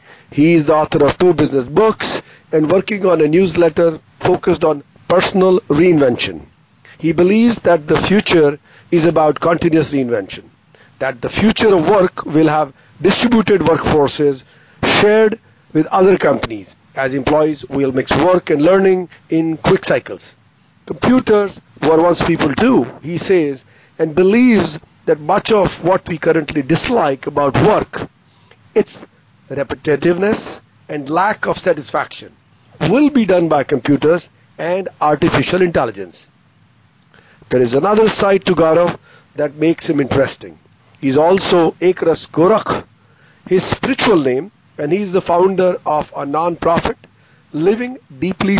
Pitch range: 150-190 Hz